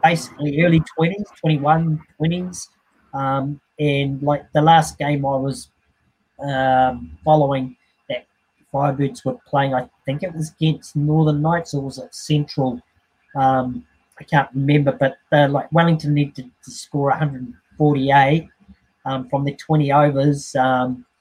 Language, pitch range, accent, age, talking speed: English, 130-155 Hz, Australian, 30-49, 140 wpm